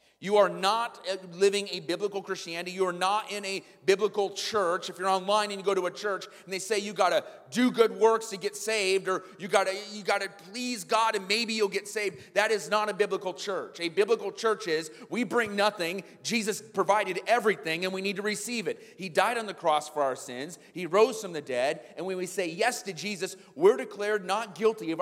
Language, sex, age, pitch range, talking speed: English, male, 30-49, 170-225 Hz, 225 wpm